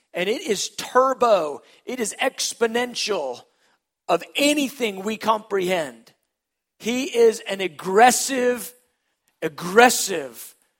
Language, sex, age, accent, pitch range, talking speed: English, male, 40-59, American, 175-265 Hz, 90 wpm